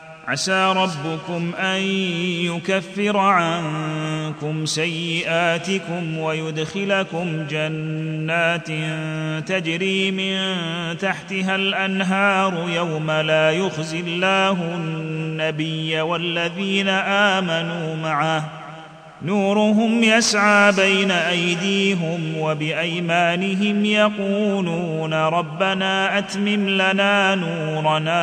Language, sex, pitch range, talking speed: Arabic, male, 160-195 Hz, 65 wpm